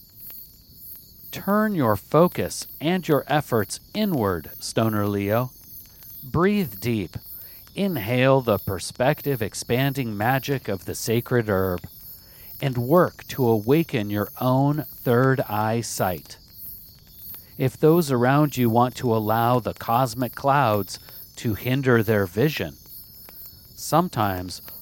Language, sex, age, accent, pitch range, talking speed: English, male, 50-69, American, 105-140 Hz, 105 wpm